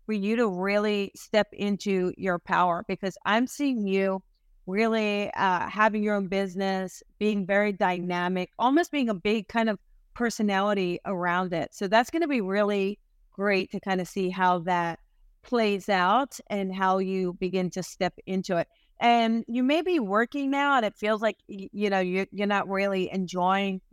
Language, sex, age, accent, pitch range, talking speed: English, female, 30-49, American, 185-215 Hz, 175 wpm